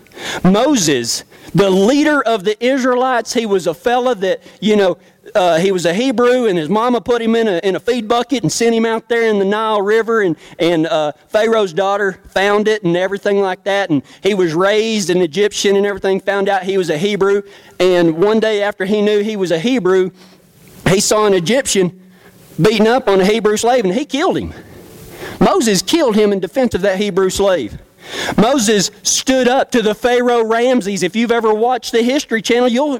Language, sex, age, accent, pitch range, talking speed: English, male, 40-59, American, 185-245 Hz, 200 wpm